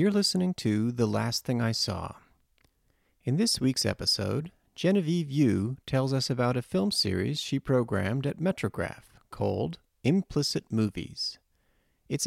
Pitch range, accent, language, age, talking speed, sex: 110-145 Hz, American, English, 40-59, 135 wpm, male